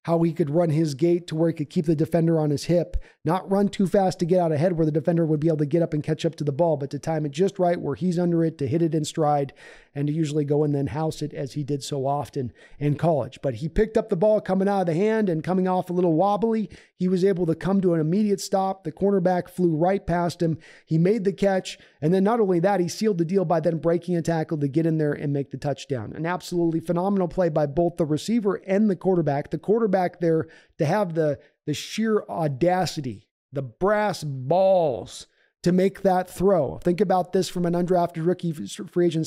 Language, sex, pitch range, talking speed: English, male, 155-185 Hz, 250 wpm